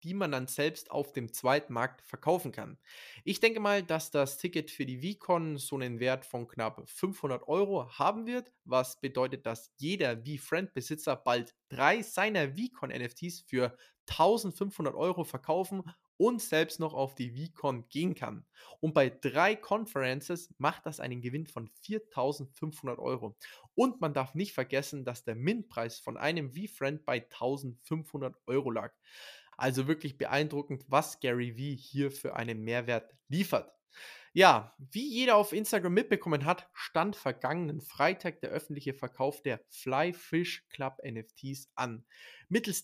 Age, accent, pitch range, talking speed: 20-39, German, 130-185 Hz, 150 wpm